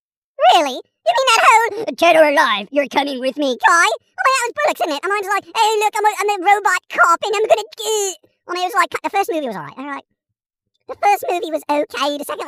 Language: English